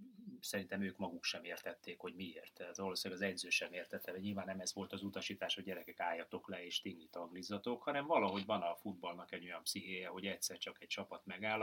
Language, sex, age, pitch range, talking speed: Hungarian, male, 30-49, 95-125 Hz, 205 wpm